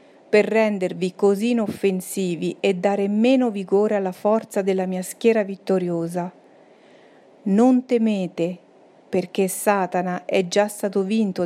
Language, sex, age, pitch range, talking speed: Italian, female, 50-69, 180-210 Hz, 115 wpm